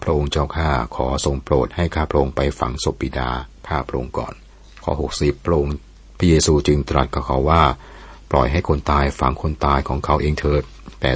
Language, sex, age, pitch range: Thai, male, 60-79, 65-80 Hz